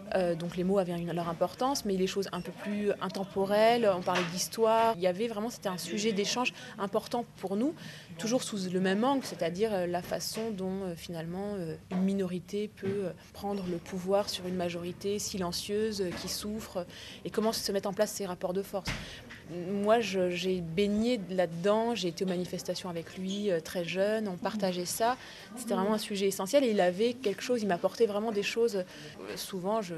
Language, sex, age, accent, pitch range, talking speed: French, female, 20-39, French, 180-220 Hz, 190 wpm